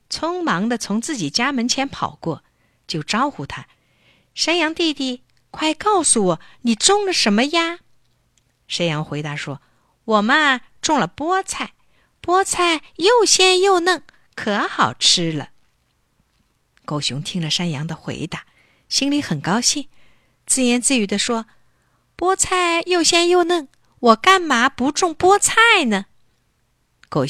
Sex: female